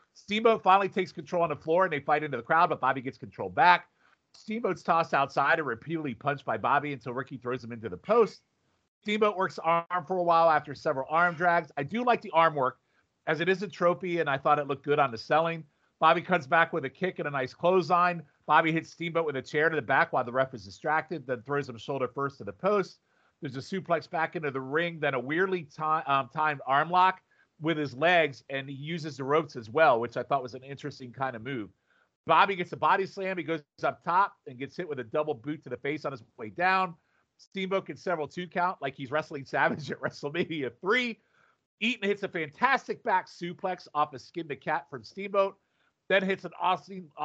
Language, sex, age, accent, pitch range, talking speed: English, male, 40-59, American, 140-180 Hz, 230 wpm